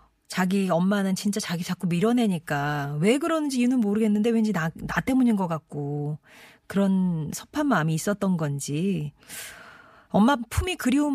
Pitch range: 160-225 Hz